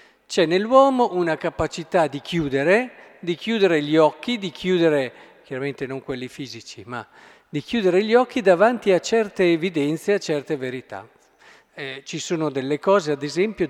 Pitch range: 150-210 Hz